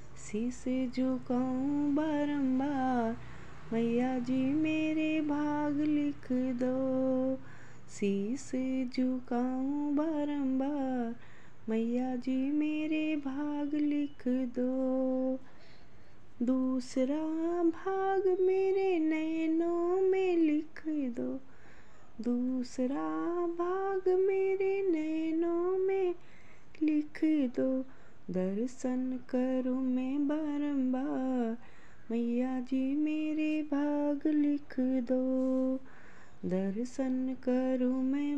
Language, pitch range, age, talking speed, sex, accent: Hindi, 255-310 Hz, 20-39, 70 wpm, female, native